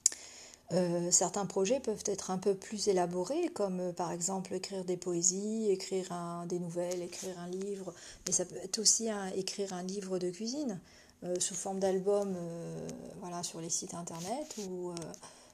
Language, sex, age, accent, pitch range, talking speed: French, female, 40-59, French, 180-205 Hz, 180 wpm